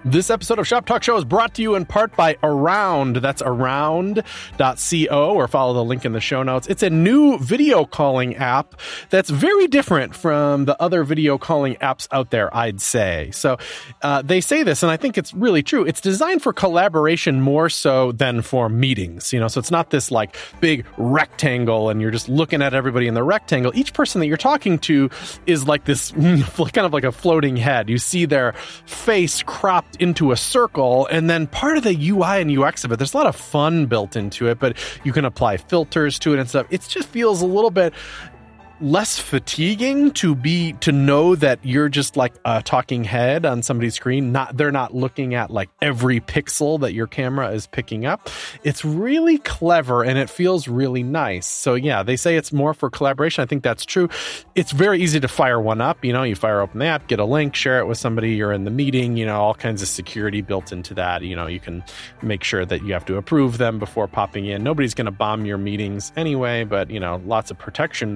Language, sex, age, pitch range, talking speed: English, male, 30-49, 120-165 Hz, 220 wpm